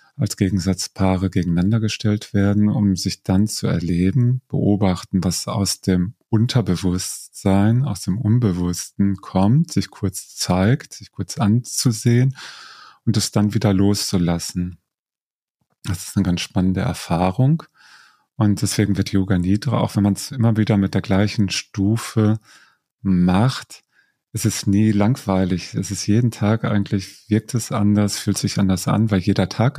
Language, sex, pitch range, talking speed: German, male, 95-115 Hz, 145 wpm